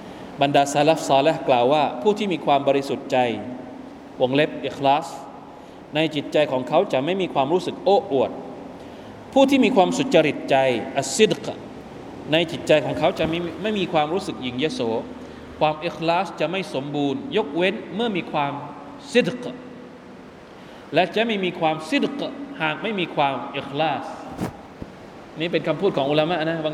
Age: 20-39